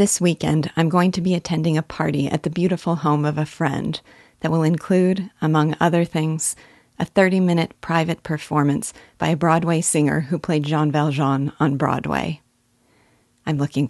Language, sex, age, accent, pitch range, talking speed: English, female, 40-59, American, 145-175 Hz, 165 wpm